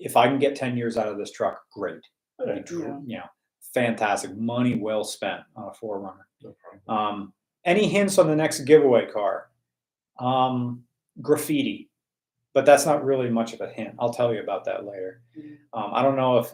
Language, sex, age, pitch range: English, male, 40-59, 120-155 Hz